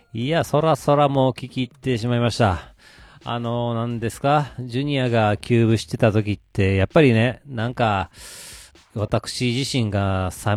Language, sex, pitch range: Japanese, male, 110-135 Hz